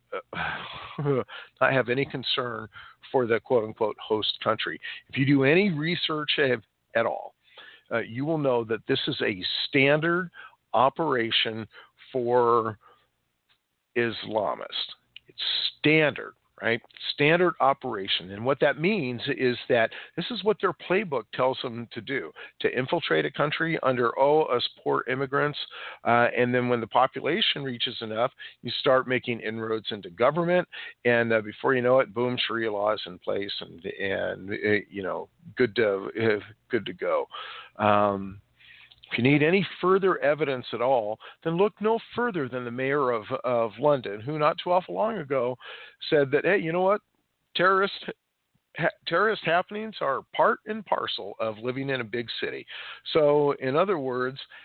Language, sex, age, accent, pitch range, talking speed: English, male, 50-69, American, 120-160 Hz, 160 wpm